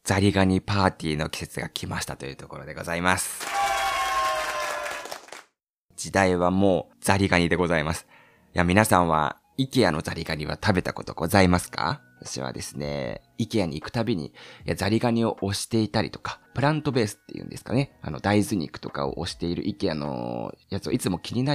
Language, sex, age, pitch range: Japanese, male, 20-39, 85-120 Hz